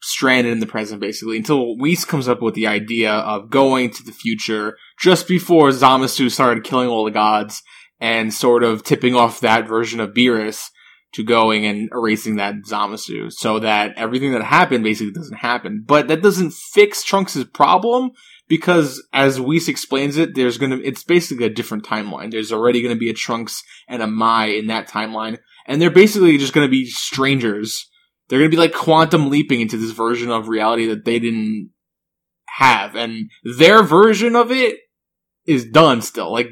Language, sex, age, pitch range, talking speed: English, male, 20-39, 115-165 Hz, 180 wpm